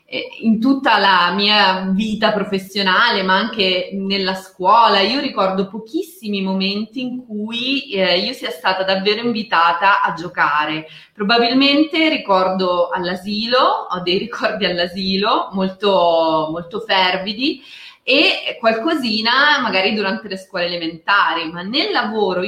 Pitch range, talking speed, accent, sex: 185-235 Hz, 110 wpm, native, female